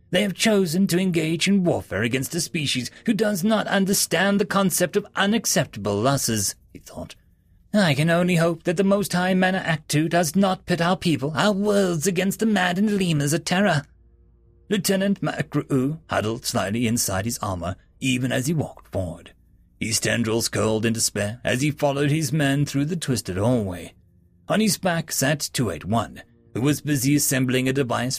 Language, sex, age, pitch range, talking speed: English, male, 30-49, 115-175 Hz, 170 wpm